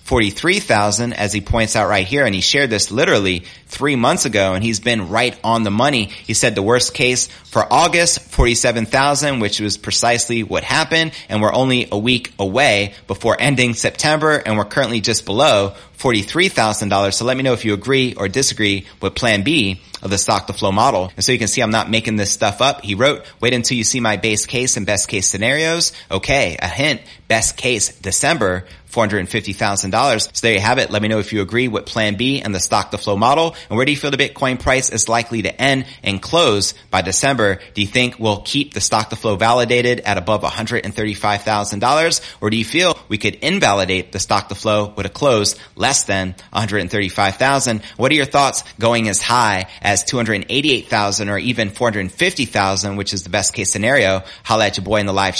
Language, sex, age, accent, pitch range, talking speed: English, male, 30-49, American, 100-125 Hz, 230 wpm